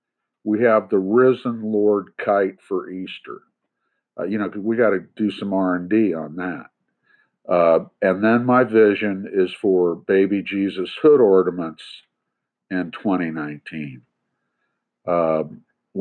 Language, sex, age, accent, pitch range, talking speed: English, male, 50-69, American, 90-115 Hz, 125 wpm